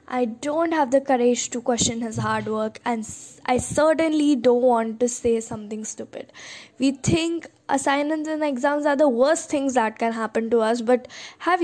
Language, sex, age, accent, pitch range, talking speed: English, female, 20-39, Indian, 225-275 Hz, 180 wpm